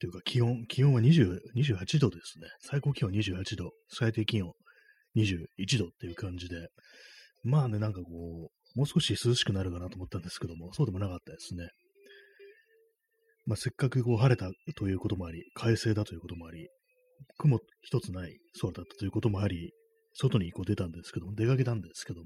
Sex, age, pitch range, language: male, 30-49, 90-140 Hz, Japanese